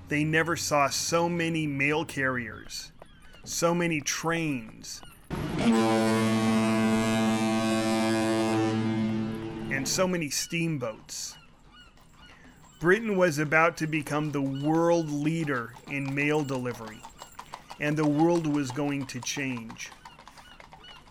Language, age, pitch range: English, 30-49, 110-155 Hz